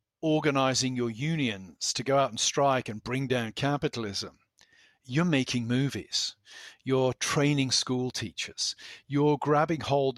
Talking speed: 130 wpm